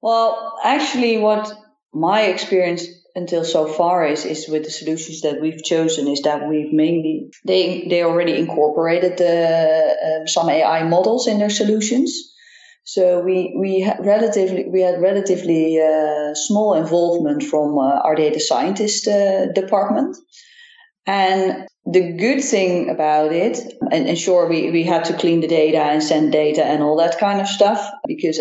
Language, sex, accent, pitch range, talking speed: English, female, Dutch, 160-200 Hz, 160 wpm